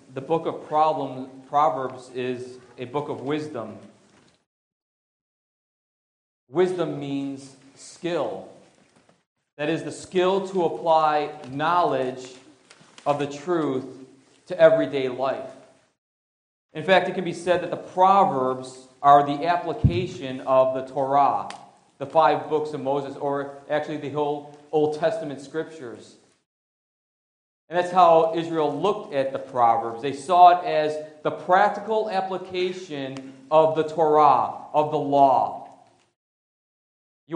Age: 40-59